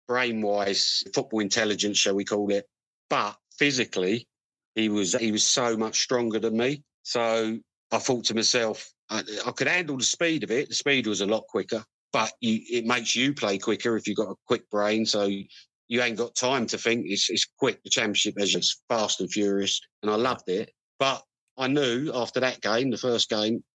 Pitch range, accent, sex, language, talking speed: 105-120 Hz, British, male, English, 200 wpm